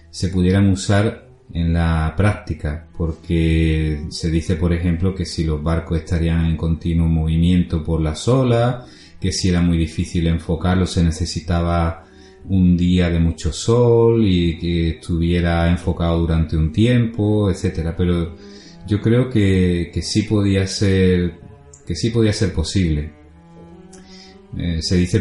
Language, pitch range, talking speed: Spanish, 85-100 Hz, 140 wpm